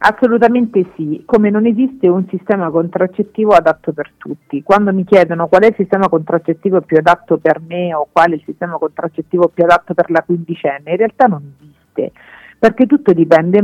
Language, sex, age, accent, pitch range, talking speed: Italian, female, 50-69, native, 165-195 Hz, 180 wpm